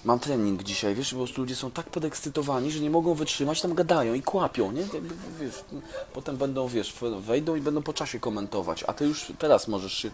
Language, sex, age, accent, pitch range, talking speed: Polish, male, 20-39, native, 125-175 Hz, 200 wpm